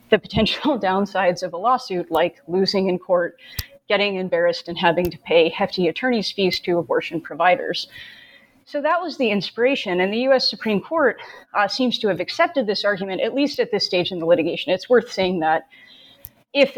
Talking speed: 185 wpm